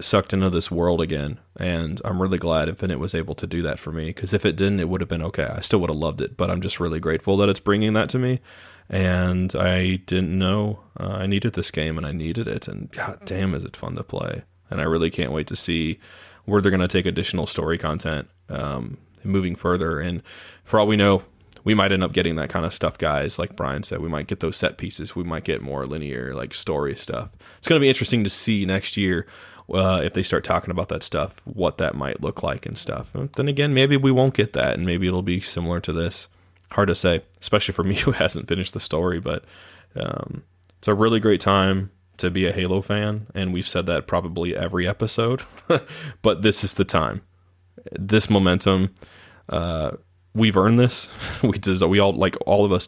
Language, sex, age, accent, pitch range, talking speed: English, male, 20-39, American, 85-100 Hz, 225 wpm